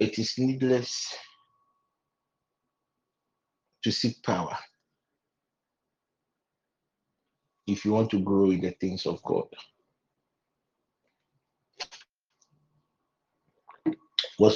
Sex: male